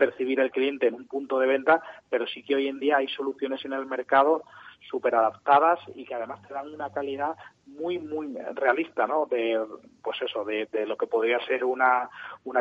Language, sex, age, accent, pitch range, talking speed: Spanish, male, 30-49, Spanish, 125-145 Hz, 205 wpm